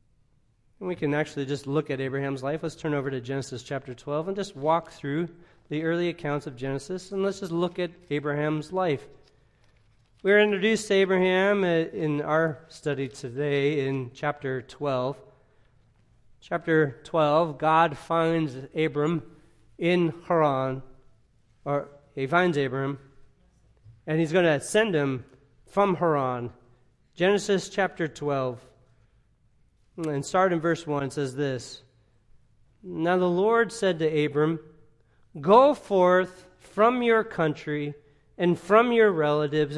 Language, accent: English, American